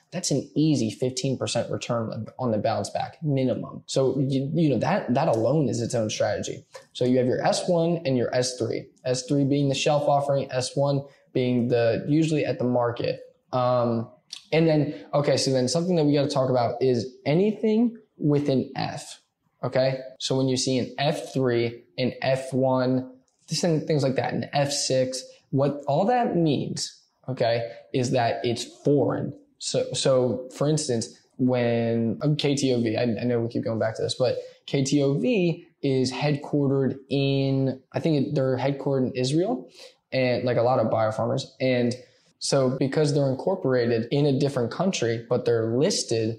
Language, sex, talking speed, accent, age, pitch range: English, male, 165 wpm, American, 10-29, 125-150 Hz